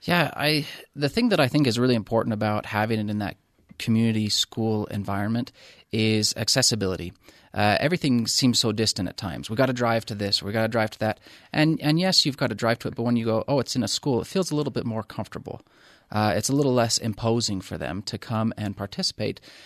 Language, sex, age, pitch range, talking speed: English, male, 30-49, 105-125 Hz, 230 wpm